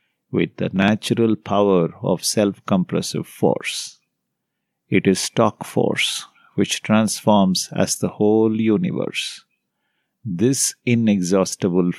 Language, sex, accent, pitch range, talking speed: English, male, Indian, 95-120 Hz, 95 wpm